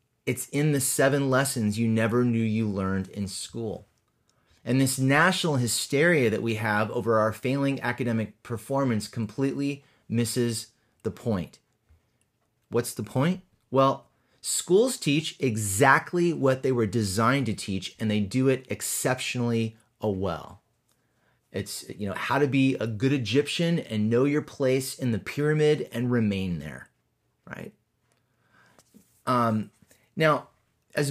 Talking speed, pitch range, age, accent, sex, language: 135 wpm, 110-135 Hz, 30-49, American, male, English